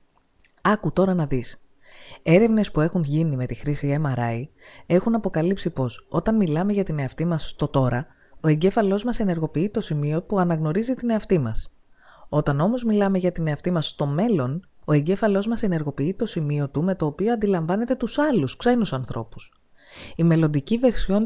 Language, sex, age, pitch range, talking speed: Greek, female, 20-39, 140-210 Hz, 170 wpm